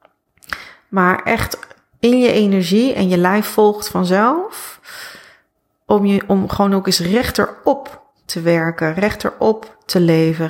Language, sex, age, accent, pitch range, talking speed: Dutch, female, 30-49, Dutch, 175-215 Hz, 135 wpm